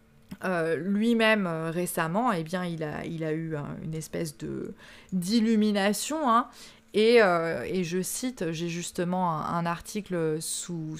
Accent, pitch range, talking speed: French, 175-210 Hz, 155 wpm